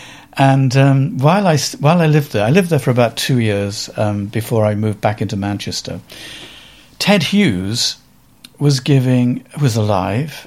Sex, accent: male, British